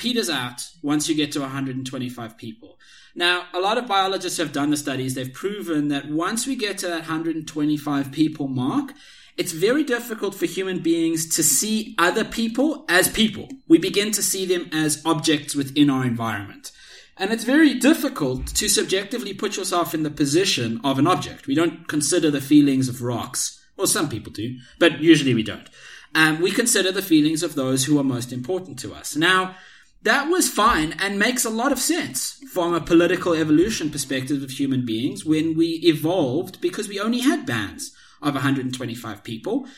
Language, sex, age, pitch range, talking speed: English, male, 30-49, 140-205 Hz, 185 wpm